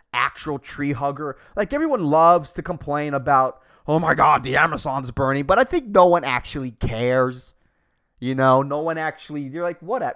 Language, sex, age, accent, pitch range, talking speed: English, male, 20-39, American, 125-195 Hz, 185 wpm